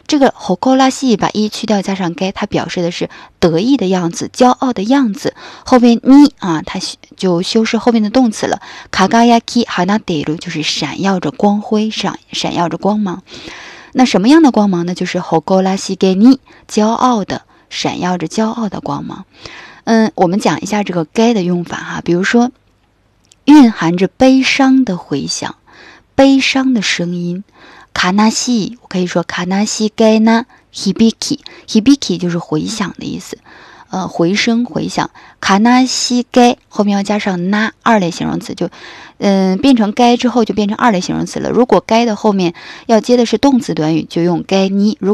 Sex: female